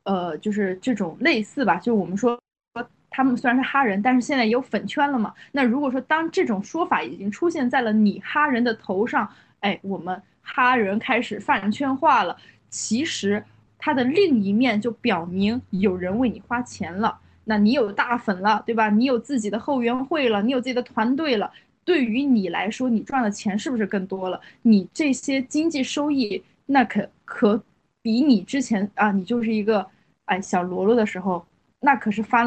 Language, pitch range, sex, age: Chinese, 210-265 Hz, female, 20-39